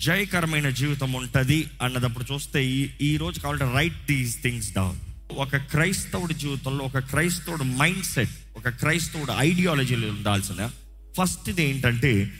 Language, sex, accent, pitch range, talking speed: Telugu, male, native, 120-170 Hz, 125 wpm